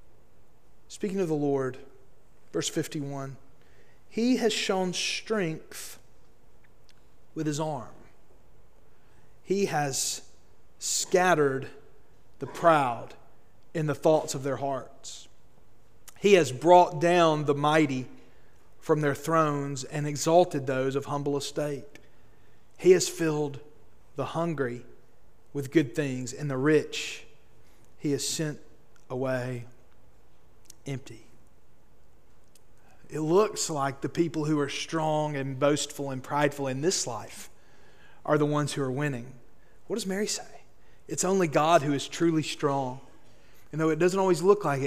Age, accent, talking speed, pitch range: 40-59, American, 125 wpm, 130-160 Hz